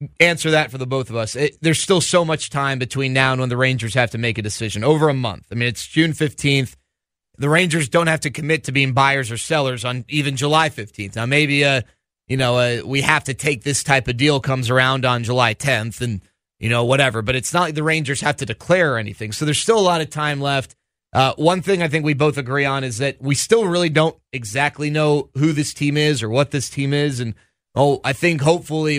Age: 30-49